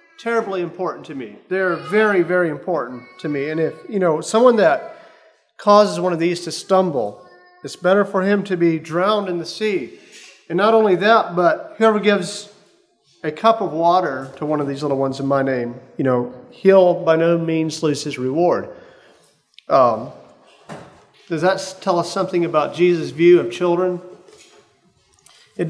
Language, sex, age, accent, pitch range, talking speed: English, male, 40-59, American, 155-200 Hz, 170 wpm